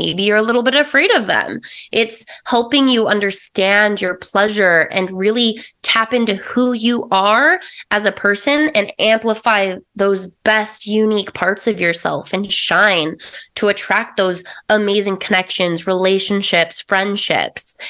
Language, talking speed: English, 135 wpm